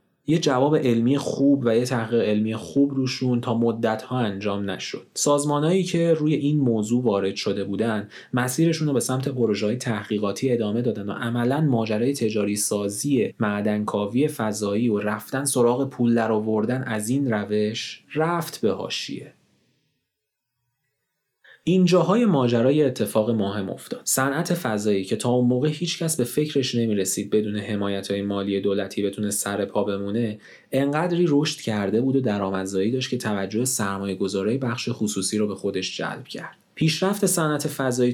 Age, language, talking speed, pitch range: 30-49, Persian, 145 wpm, 105-135 Hz